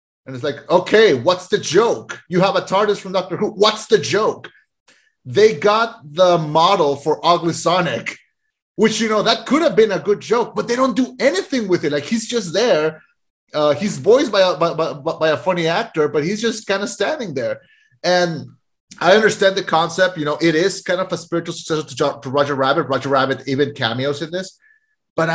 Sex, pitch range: male, 155-205 Hz